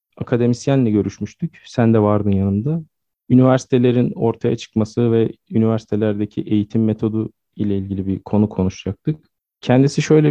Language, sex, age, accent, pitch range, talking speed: Turkish, male, 40-59, native, 110-130 Hz, 115 wpm